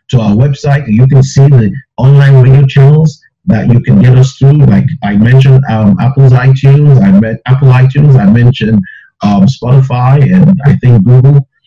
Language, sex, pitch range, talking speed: English, male, 125-140 Hz, 175 wpm